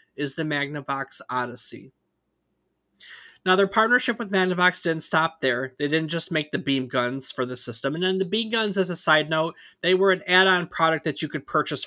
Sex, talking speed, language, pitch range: male, 200 wpm, English, 135-180 Hz